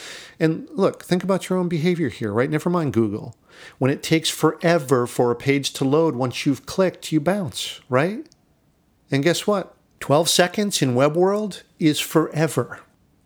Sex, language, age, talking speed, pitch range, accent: male, English, 50-69, 165 wpm, 120-160 Hz, American